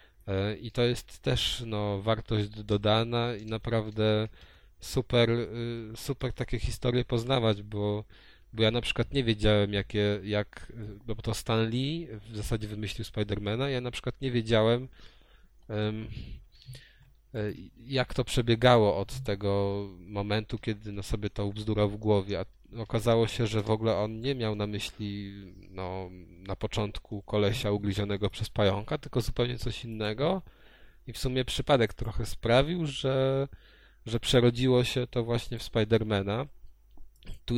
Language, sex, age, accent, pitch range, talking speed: Polish, male, 20-39, native, 100-115 Hz, 135 wpm